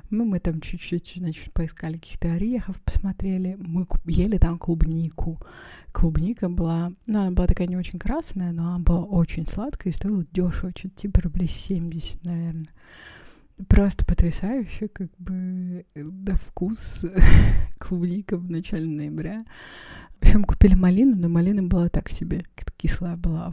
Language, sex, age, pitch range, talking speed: Russian, female, 20-39, 165-185 Hz, 150 wpm